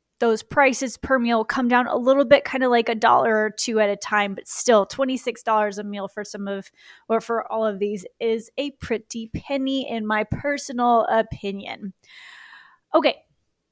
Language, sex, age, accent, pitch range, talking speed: English, female, 20-39, American, 210-255 Hz, 180 wpm